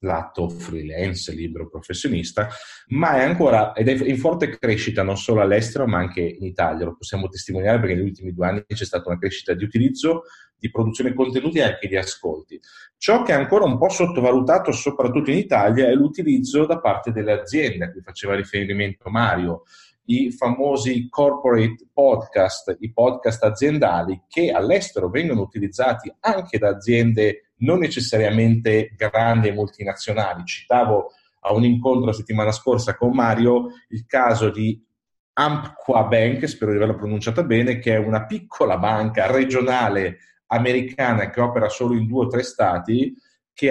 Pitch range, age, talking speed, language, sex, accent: 100-130 Hz, 30-49, 160 wpm, Italian, male, native